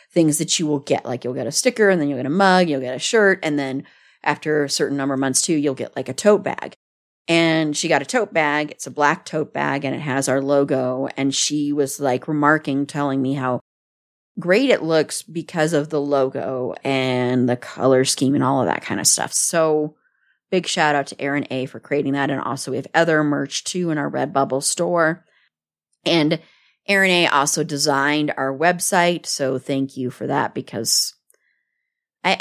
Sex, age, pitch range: female, 30-49, 140-165 Hz